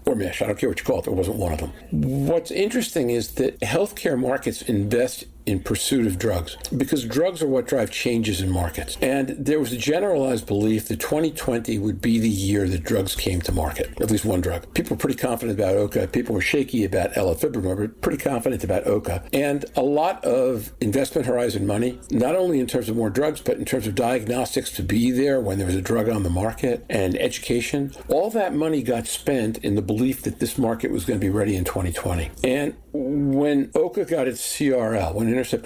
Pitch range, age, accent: 100-135 Hz, 60-79, American